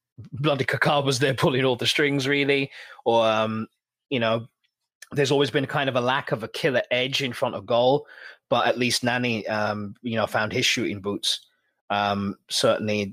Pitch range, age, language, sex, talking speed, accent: 105-140 Hz, 20-39, English, male, 185 wpm, British